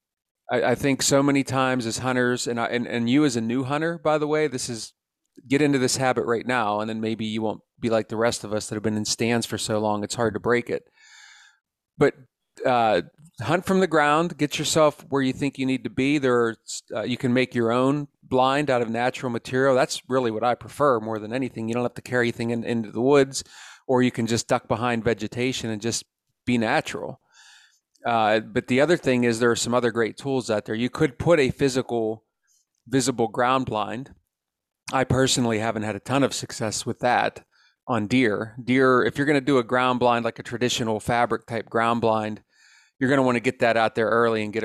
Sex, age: male, 40-59